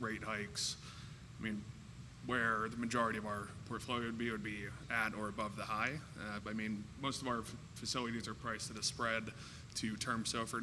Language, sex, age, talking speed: English, male, 20-39, 205 wpm